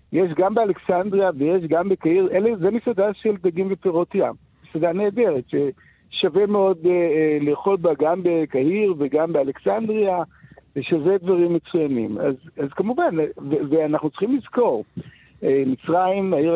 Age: 60-79